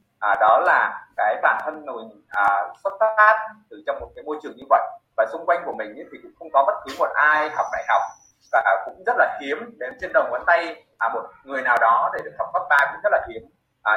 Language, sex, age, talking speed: Vietnamese, male, 20-39, 260 wpm